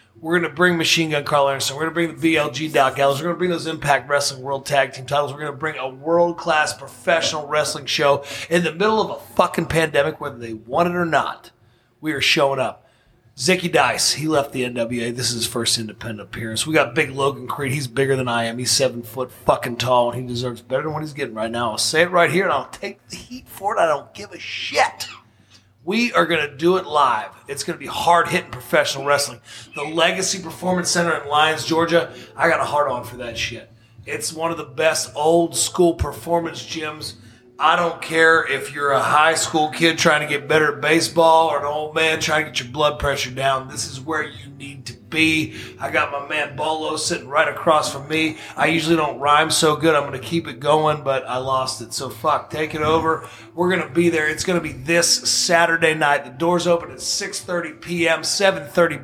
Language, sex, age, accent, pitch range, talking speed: English, male, 30-49, American, 130-165 Hz, 230 wpm